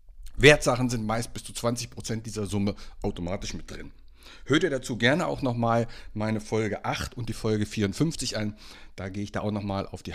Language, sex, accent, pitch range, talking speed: German, male, German, 90-125 Hz, 195 wpm